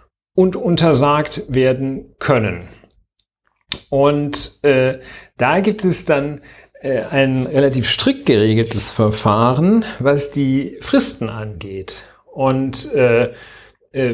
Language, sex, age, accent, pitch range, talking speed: German, male, 40-59, German, 120-155 Hz, 95 wpm